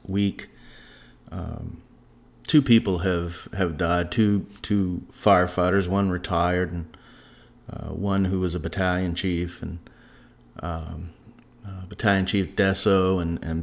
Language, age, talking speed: English, 30-49, 125 wpm